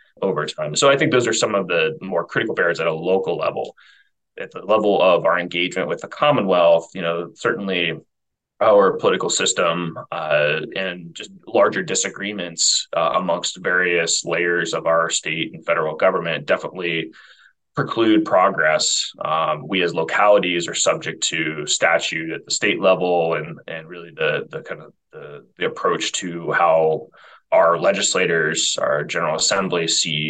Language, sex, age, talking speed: English, male, 20-39, 160 wpm